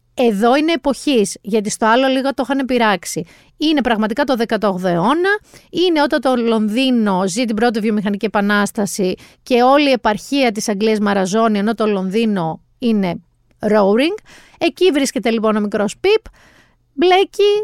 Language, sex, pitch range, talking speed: Greek, female, 210-305 Hz, 145 wpm